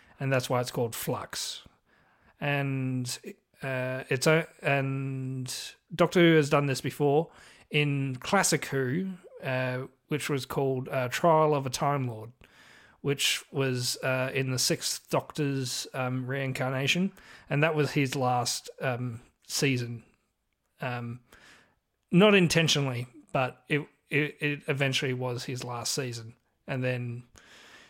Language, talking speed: English, 130 wpm